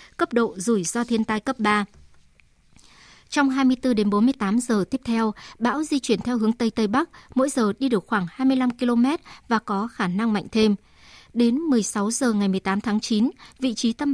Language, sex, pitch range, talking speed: Vietnamese, male, 205-260 Hz, 195 wpm